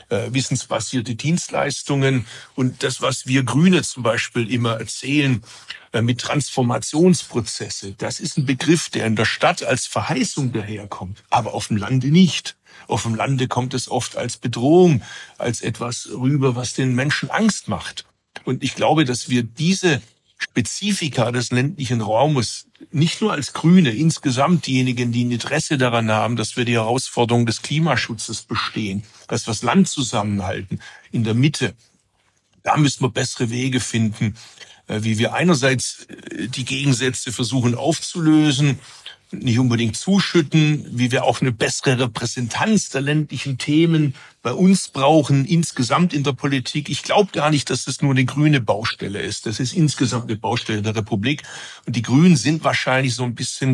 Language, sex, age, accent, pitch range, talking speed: German, male, 60-79, German, 120-150 Hz, 155 wpm